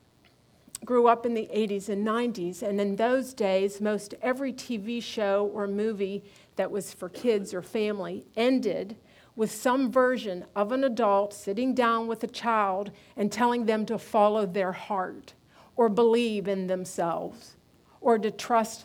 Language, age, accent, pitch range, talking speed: English, 50-69, American, 200-250 Hz, 155 wpm